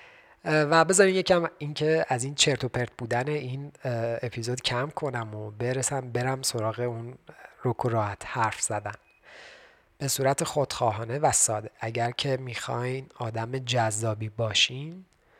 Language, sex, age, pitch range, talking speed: Persian, male, 30-49, 120-155 Hz, 125 wpm